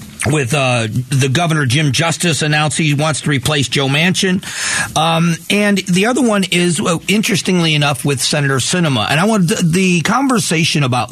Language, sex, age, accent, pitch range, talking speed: English, male, 40-59, American, 130-170 Hz, 165 wpm